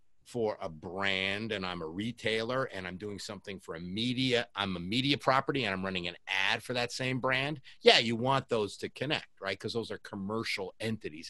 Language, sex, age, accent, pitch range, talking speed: English, male, 50-69, American, 105-140 Hz, 205 wpm